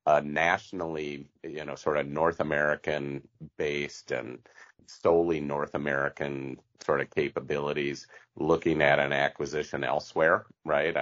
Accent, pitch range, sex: American, 75-90 Hz, male